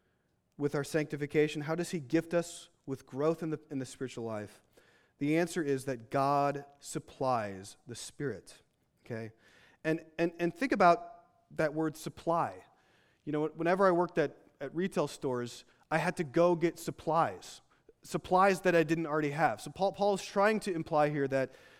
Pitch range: 150-200 Hz